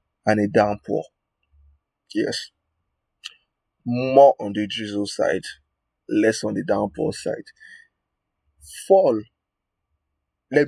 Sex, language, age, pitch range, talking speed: male, English, 30-49, 95-120 Hz, 90 wpm